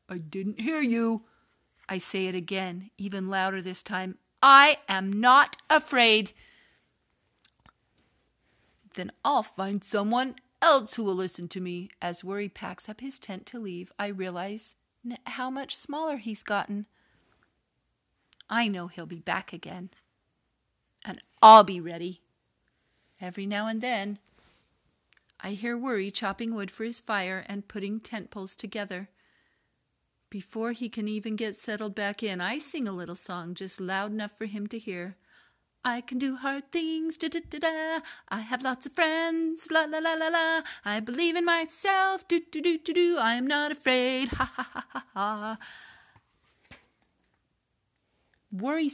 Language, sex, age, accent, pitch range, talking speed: English, female, 50-69, American, 190-270 Hz, 145 wpm